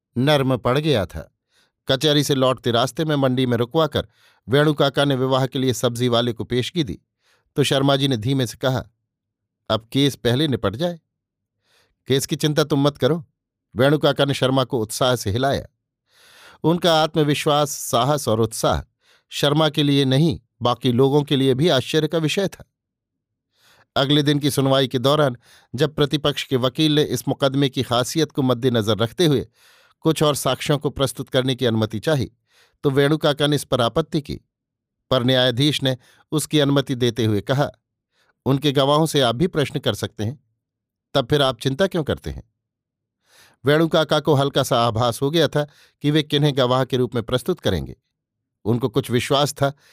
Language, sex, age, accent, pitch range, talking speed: Hindi, male, 50-69, native, 125-150 Hz, 175 wpm